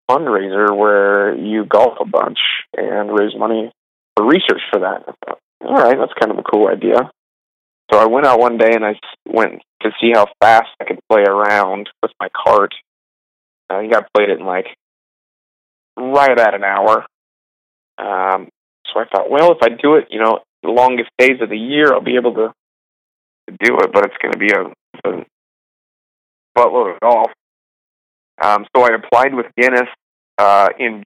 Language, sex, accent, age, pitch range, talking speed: English, male, American, 30-49, 105-120 Hz, 180 wpm